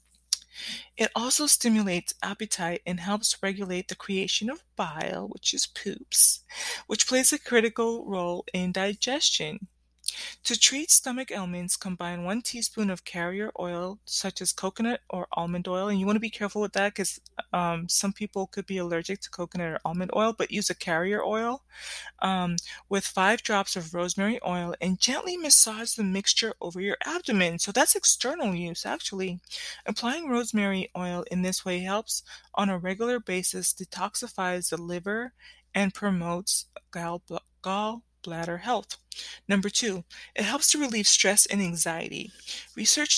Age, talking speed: 20-39, 155 wpm